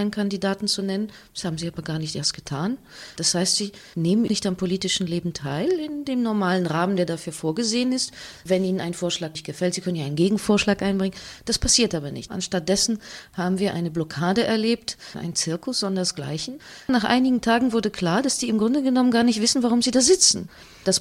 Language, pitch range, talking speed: English, 185-255 Hz, 205 wpm